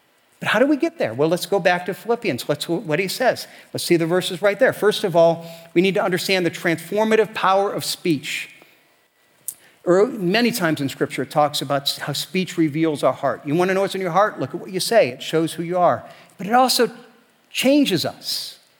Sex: male